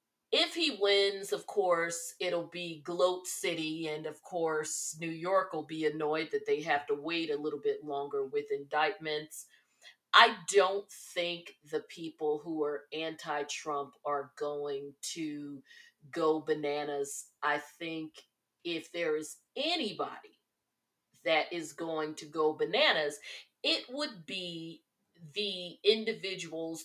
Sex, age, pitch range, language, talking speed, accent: female, 40-59, 155-195 Hz, English, 130 wpm, American